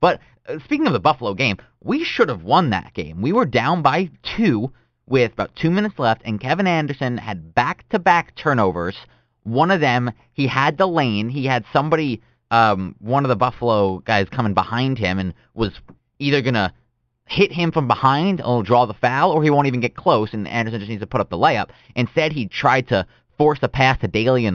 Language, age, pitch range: English, 20-39, 100-135 Hz